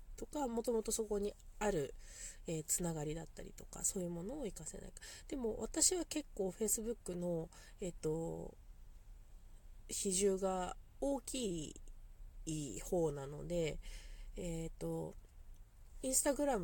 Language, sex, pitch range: Japanese, female, 160-230 Hz